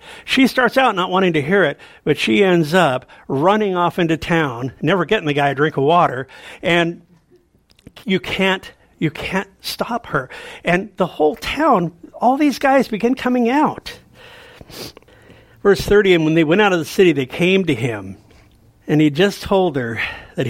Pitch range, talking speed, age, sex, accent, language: 150-205 Hz, 180 wpm, 50-69, male, American, English